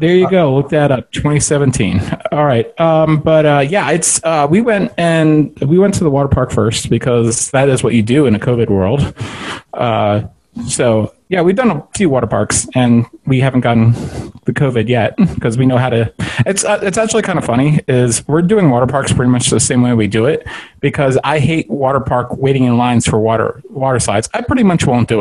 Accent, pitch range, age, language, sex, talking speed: American, 120-160 Hz, 30-49, English, male, 225 wpm